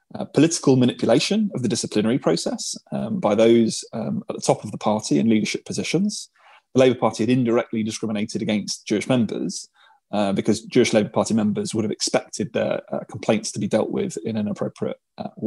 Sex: male